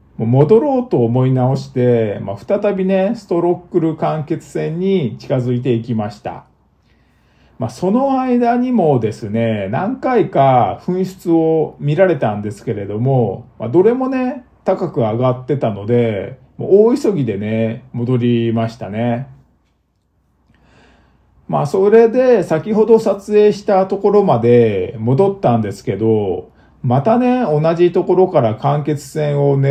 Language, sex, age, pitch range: Japanese, male, 50-69, 115-190 Hz